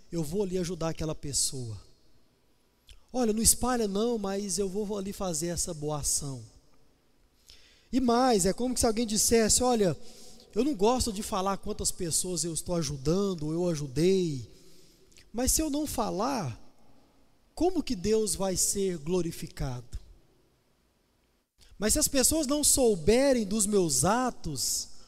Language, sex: Portuguese, male